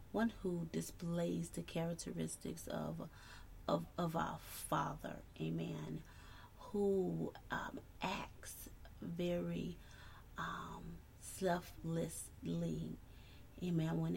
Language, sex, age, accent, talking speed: English, female, 30-49, American, 80 wpm